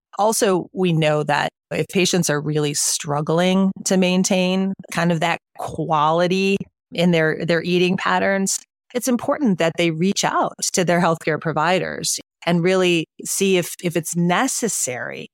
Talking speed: 145 wpm